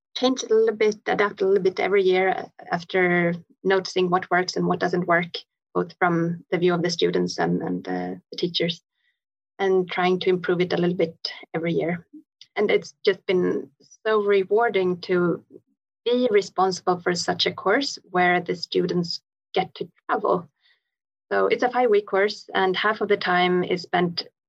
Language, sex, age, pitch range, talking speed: English, female, 30-49, 175-205 Hz, 175 wpm